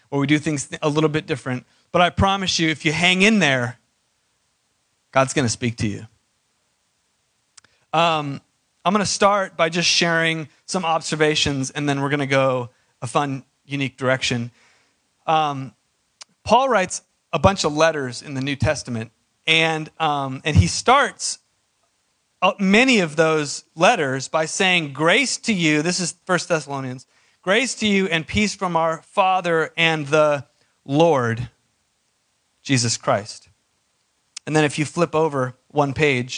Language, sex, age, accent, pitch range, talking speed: English, male, 30-49, American, 125-165 Hz, 155 wpm